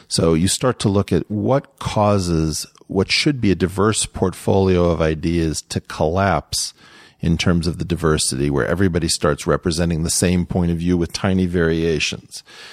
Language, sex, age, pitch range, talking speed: English, male, 40-59, 85-105 Hz, 165 wpm